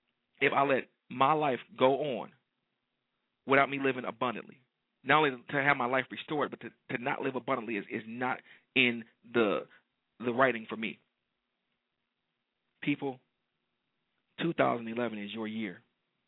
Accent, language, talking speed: American, English, 140 wpm